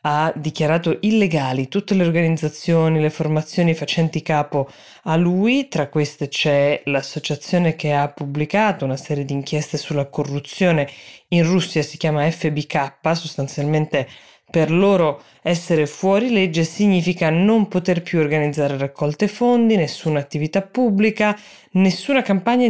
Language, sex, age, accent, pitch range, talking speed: Italian, female, 20-39, native, 150-180 Hz, 125 wpm